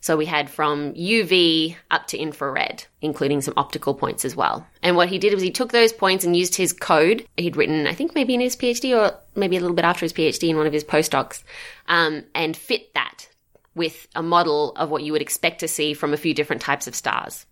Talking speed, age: 235 wpm, 20-39